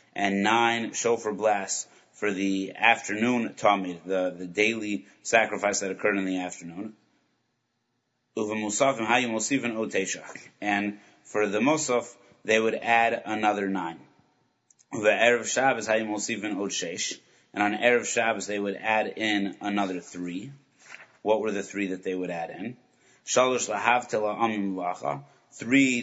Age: 30-49